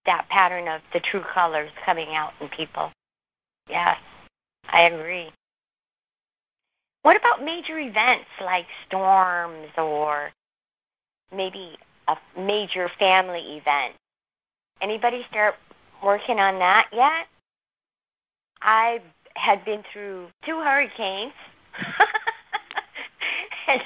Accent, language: American, English